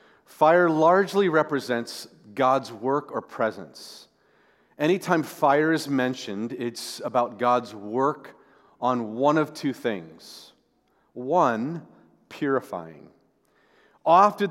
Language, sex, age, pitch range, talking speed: English, male, 40-59, 125-150 Hz, 95 wpm